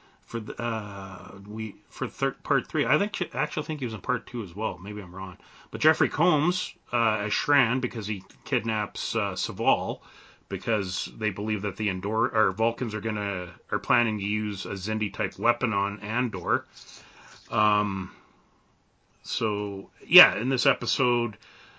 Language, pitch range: English, 100-125 Hz